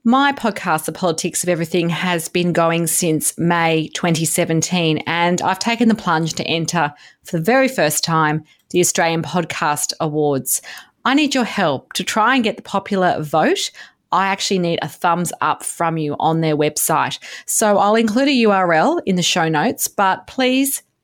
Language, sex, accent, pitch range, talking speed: English, female, Australian, 165-215 Hz, 175 wpm